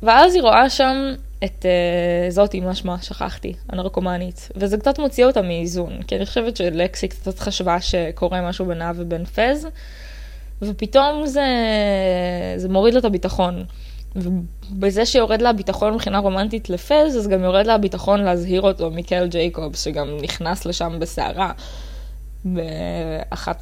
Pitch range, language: 175-215 Hz, Hebrew